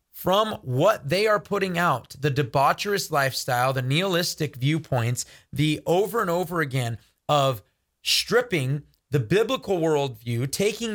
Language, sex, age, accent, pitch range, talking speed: English, male, 30-49, American, 140-175 Hz, 125 wpm